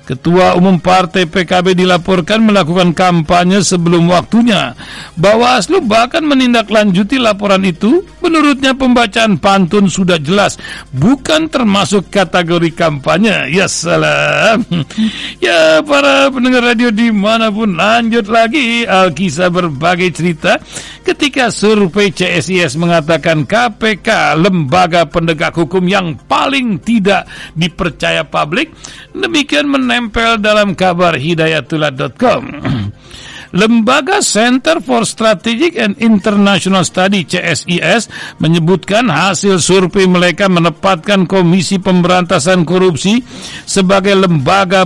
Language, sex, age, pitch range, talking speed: Indonesian, male, 60-79, 175-220 Hz, 100 wpm